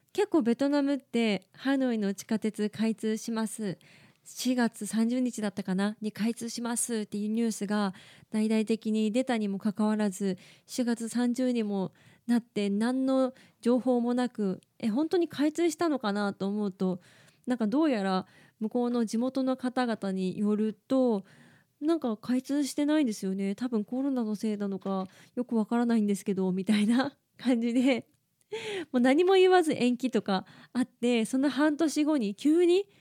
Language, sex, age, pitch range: Japanese, female, 20-39, 210-275 Hz